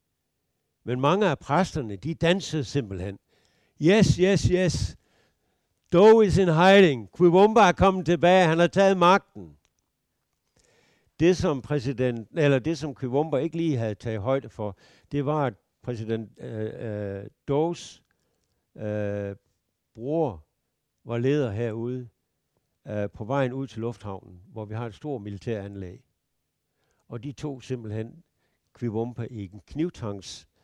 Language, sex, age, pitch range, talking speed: Danish, male, 60-79, 100-145 Hz, 130 wpm